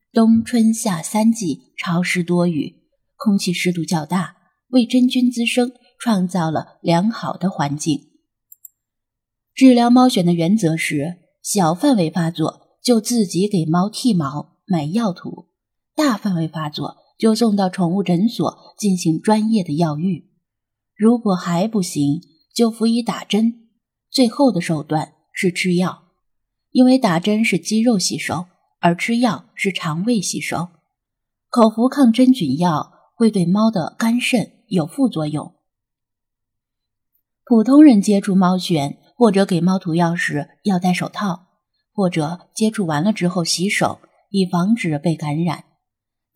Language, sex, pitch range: Chinese, female, 165-225 Hz